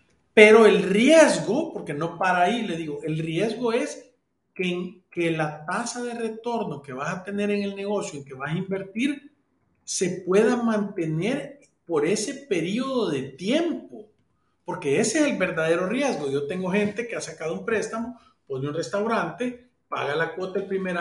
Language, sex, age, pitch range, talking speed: Spanish, male, 40-59, 155-220 Hz, 170 wpm